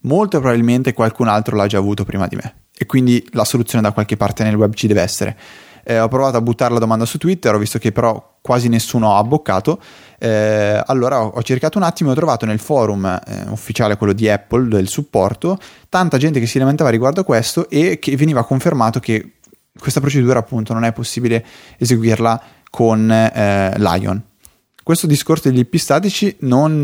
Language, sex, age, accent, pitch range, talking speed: Italian, male, 20-39, native, 105-130 Hz, 190 wpm